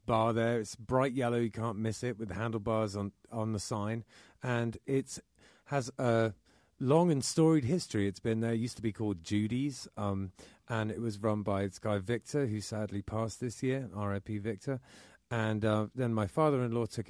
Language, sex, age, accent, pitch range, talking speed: English, male, 30-49, British, 105-120 Hz, 190 wpm